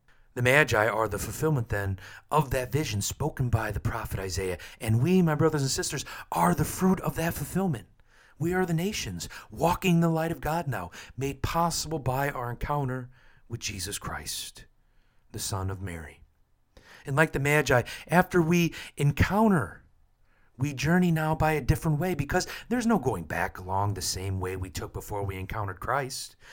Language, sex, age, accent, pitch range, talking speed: English, male, 40-59, American, 110-155 Hz, 175 wpm